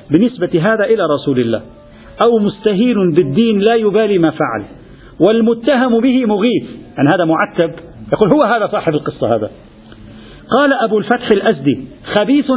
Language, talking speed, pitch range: Arabic, 140 wpm, 150-200 Hz